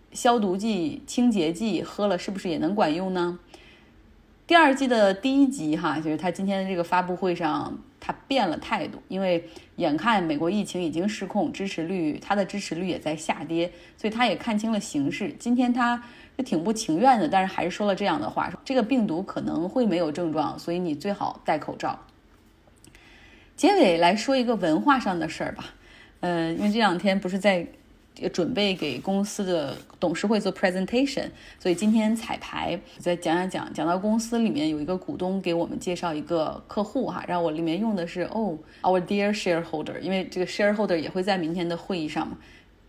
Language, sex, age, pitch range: Chinese, female, 20-39, 170-220 Hz